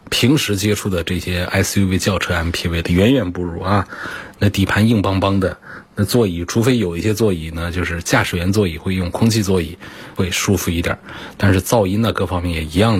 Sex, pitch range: male, 95-120 Hz